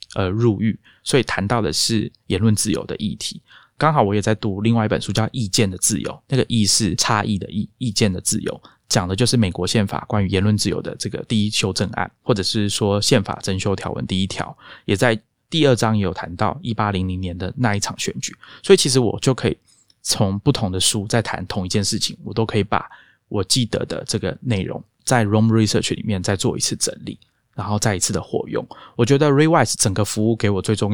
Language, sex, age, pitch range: Chinese, male, 20-39, 100-115 Hz